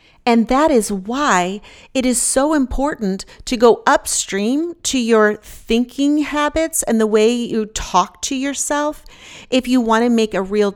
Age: 40-59